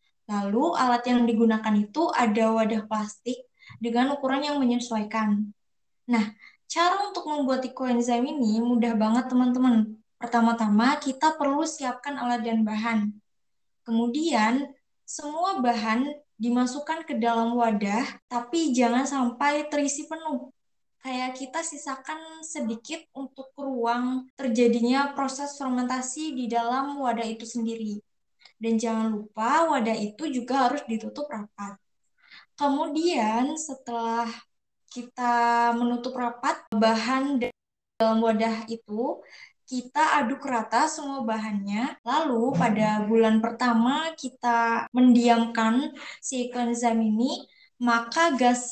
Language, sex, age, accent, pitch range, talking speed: Indonesian, female, 20-39, native, 230-275 Hz, 110 wpm